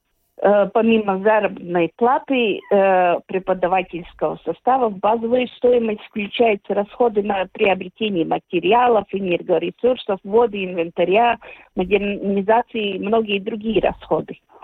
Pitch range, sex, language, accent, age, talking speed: 190-235 Hz, female, Russian, native, 50-69, 90 wpm